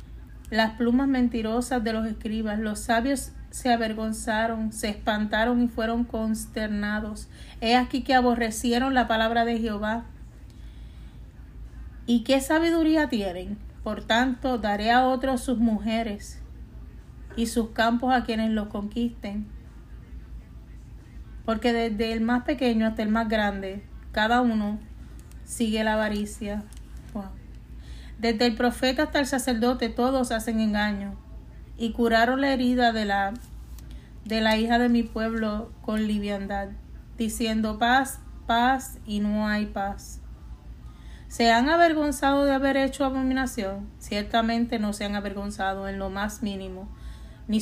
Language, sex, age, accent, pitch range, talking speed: Spanish, female, 30-49, American, 205-240 Hz, 130 wpm